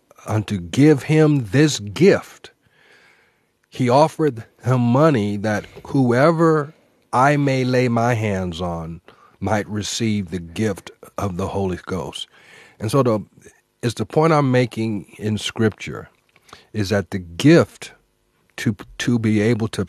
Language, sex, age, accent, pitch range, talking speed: English, male, 50-69, American, 95-120 Hz, 135 wpm